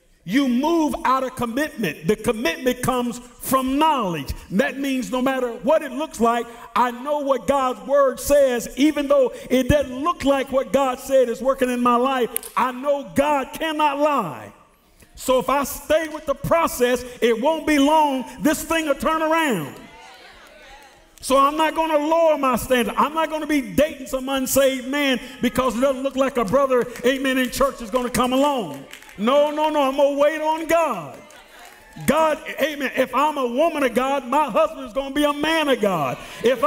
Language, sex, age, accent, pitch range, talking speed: English, male, 50-69, American, 255-305 Hz, 195 wpm